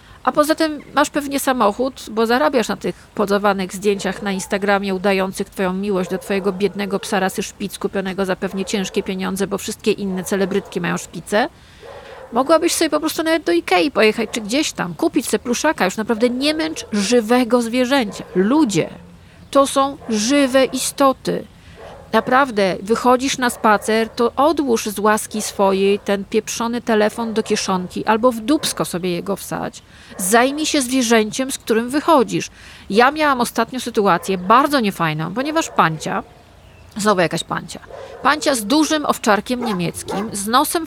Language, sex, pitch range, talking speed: Polish, female, 200-275 Hz, 150 wpm